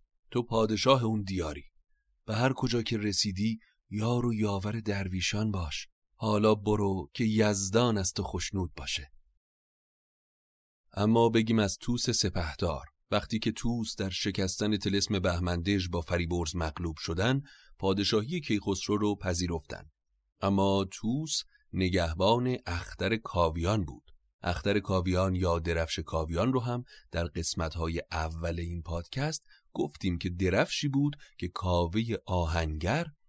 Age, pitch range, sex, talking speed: 30-49, 85-110 Hz, male, 125 wpm